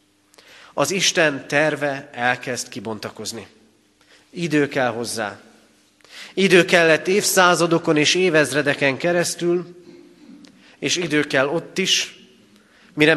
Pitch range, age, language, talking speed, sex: 110-160 Hz, 40-59, Hungarian, 90 wpm, male